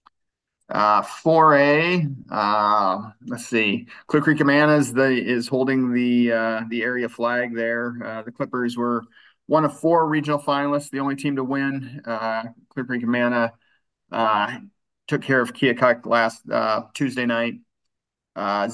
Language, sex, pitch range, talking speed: English, male, 120-140 Hz, 145 wpm